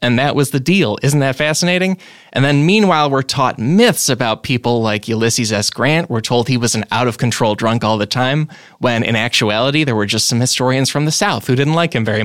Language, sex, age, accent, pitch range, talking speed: English, male, 20-39, American, 115-155 Hz, 225 wpm